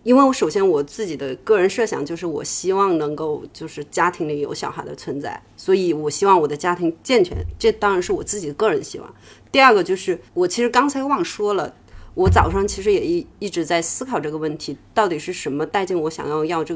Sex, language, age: female, Chinese, 30-49